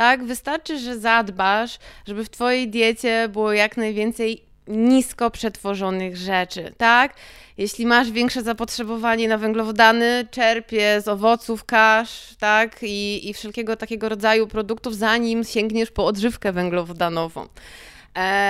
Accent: native